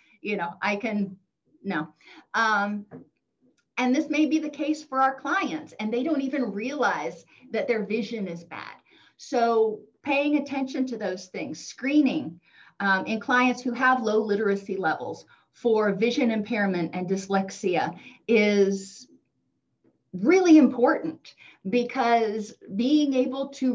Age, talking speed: 40-59, 130 wpm